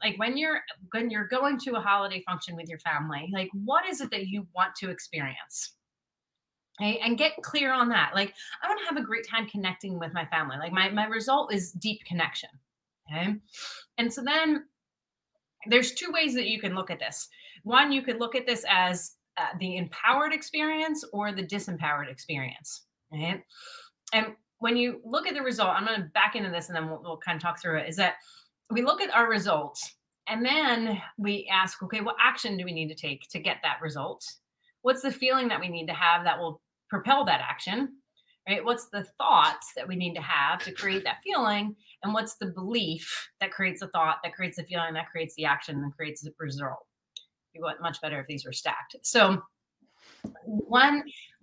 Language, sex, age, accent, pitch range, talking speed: English, female, 30-49, American, 170-245 Hz, 205 wpm